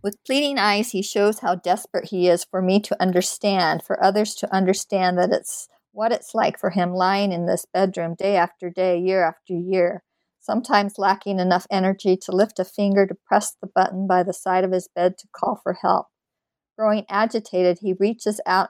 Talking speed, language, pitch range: 195 wpm, English, 180-215 Hz